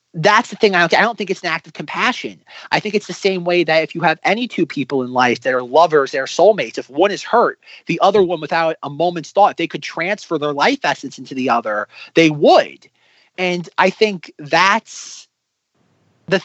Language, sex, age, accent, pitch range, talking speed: English, male, 30-49, American, 150-195 Hz, 225 wpm